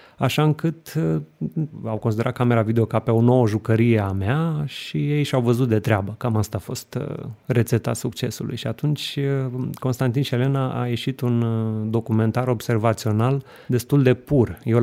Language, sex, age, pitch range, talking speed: Romanian, male, 30-49, 110-130 Hz, 160 wpm